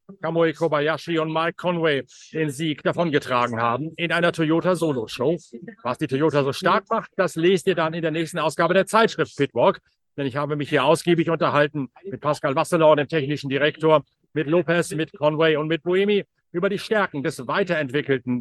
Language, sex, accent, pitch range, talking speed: German, male, German, 140-170 Hz, 175 wpm